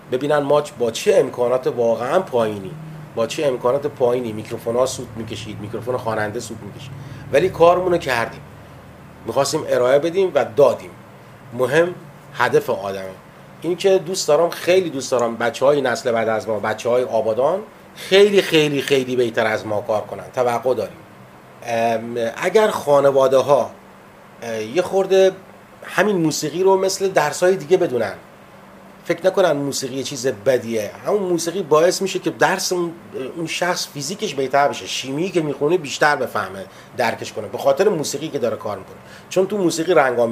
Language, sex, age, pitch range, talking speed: Persian, male, 30-49, 115-165 Hz, 145 wpm